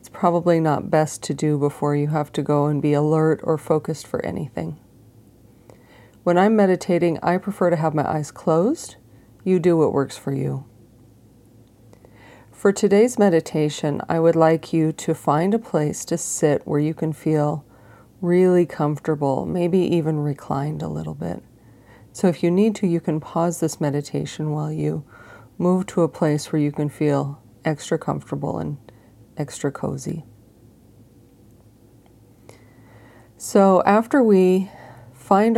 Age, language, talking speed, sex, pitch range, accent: 40-59, English, 145 wpm, female, 120-170 Hz, American